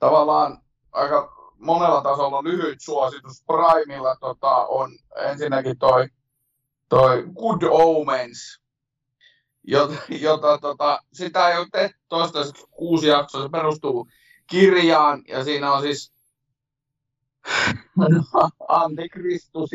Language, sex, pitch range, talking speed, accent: Finnish, male, 130-160 Hz, 100 wpm, native